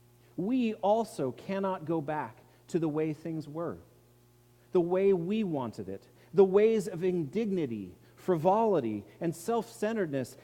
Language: English